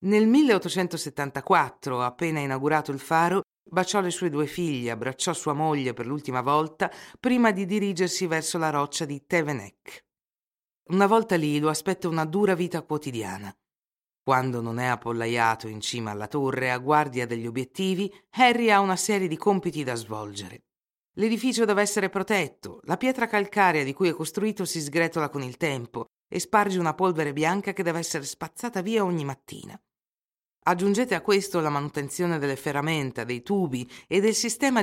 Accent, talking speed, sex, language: native, 160 wpm, female, Italian